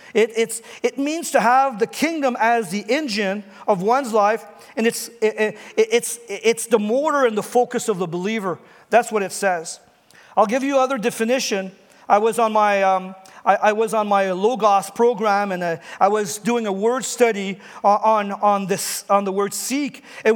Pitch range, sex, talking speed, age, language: 210-250 Hz, male, 190 wpm, 40-59, English